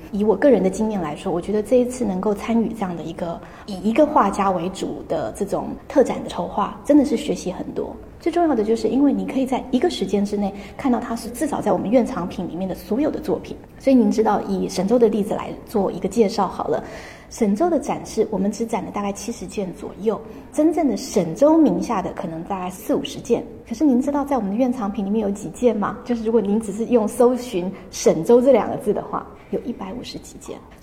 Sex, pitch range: female, 195-245 Hz